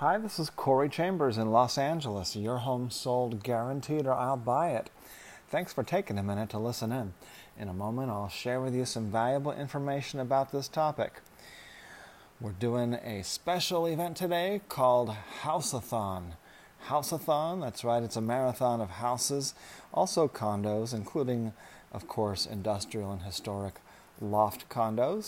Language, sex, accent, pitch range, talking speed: English, male, American, 100-125 Hz, 150 wpm